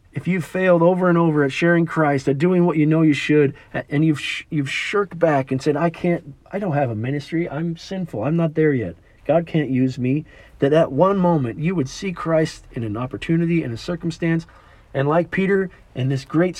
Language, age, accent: English, 40-59, American